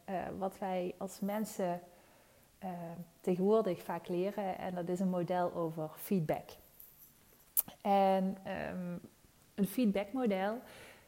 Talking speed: 105 wpm